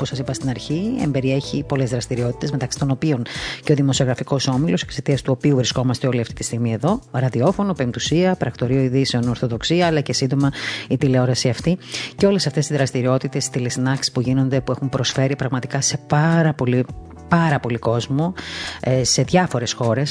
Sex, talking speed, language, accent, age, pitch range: female, 165 wpm, Greek, native, 30-49, 130-150 Hz